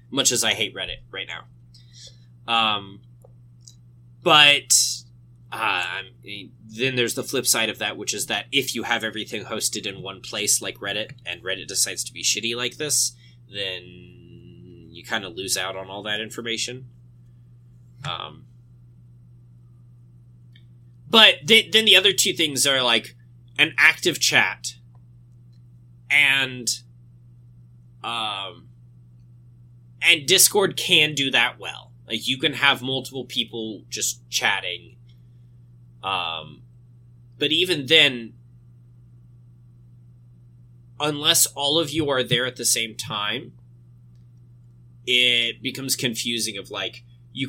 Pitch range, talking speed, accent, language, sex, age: 120-130 Hz, 125 wpm, American, English, male, 20-39